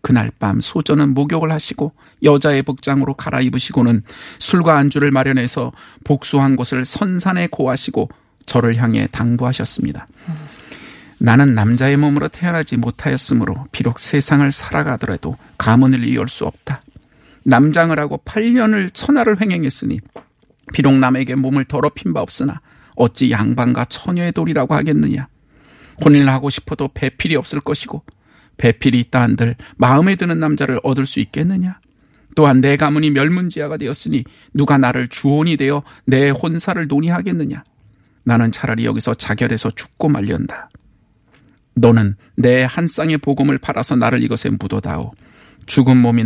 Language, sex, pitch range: Korean, male, 120-150 Hz